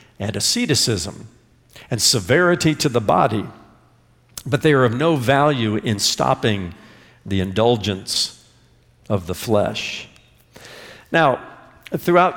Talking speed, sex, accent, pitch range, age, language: 105 wpm, male, American, 120-175 Hz, 50-69, English